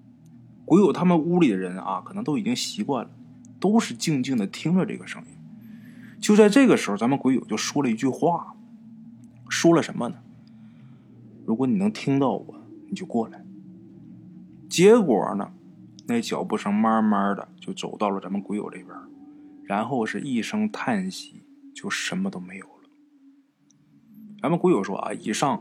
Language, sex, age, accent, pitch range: Chinese, male, 20-39, native, 155-260 Hz